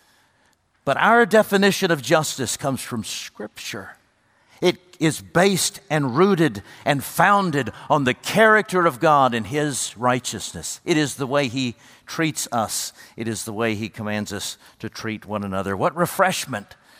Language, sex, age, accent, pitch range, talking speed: English, male, 60-79, American, 120-180 Hz, 150 wpm